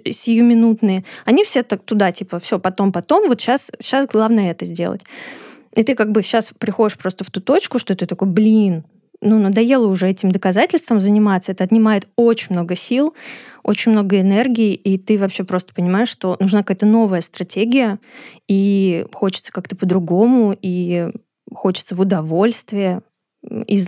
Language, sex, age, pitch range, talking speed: Russian, female, 20-39, 190-225 Hz, 155 wpm